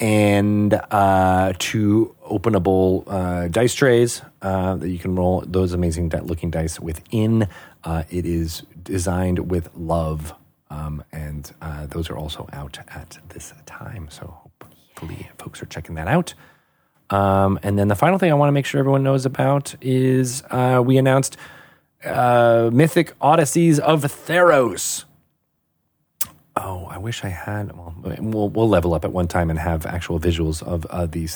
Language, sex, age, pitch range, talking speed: English, male, 30-49, 85-115 Hz, 160 wpm